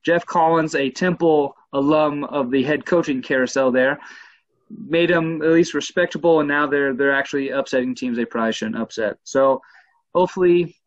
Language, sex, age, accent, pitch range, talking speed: English, male, 20-39, American, 130-175 Hz, 160 wpm